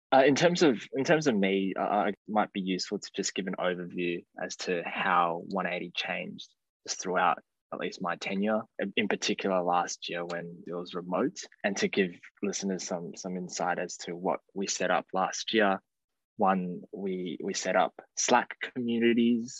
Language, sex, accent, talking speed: English, male, Australian, 175 wpm